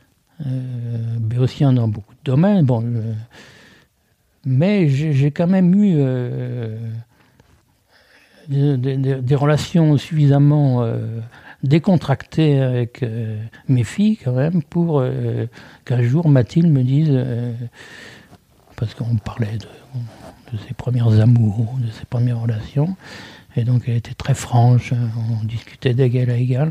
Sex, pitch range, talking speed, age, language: male, 115-140 Hz, 135 wpm, 60-79, French